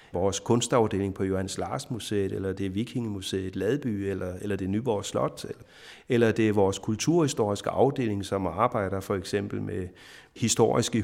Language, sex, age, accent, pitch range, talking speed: Danish, male, 30-49, native, 100-125 Hz, 150 wpm